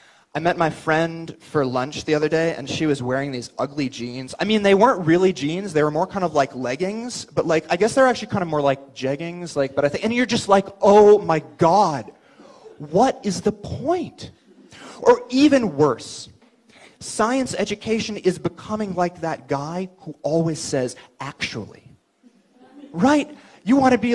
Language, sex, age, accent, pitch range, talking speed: English, male, 30-49, American, 150-230 Hz, 185 wpm